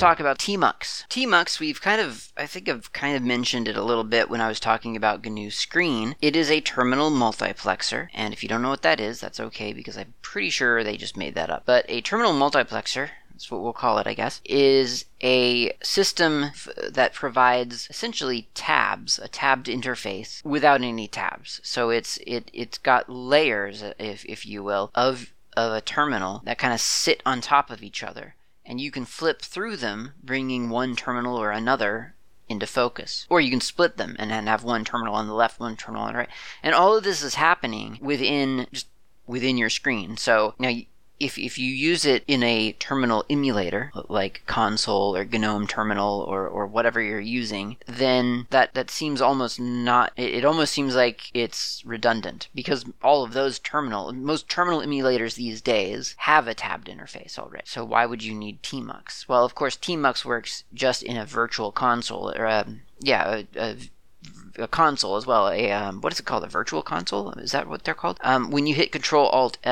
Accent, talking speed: American, 200 wpm